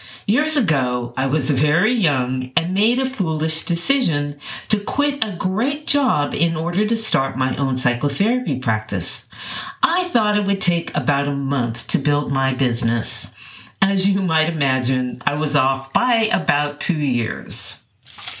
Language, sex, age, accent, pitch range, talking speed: English, female, 50-69, American, 135-195 Hz, 155 wpm